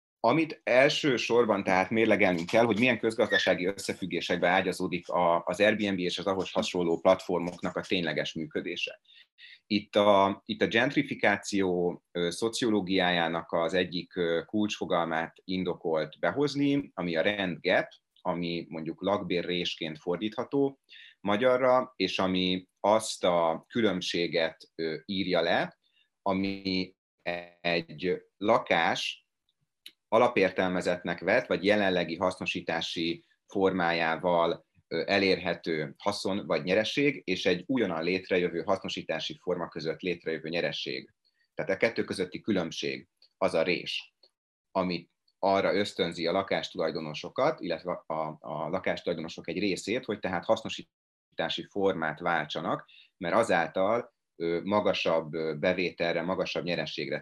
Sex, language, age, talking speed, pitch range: male, Hungarian, 30-49, 105 wpm, 85-100 Hz